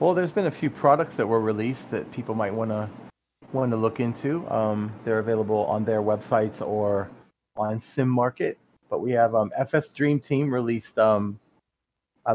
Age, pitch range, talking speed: 30-49, 110-135 Hz, 185 wpm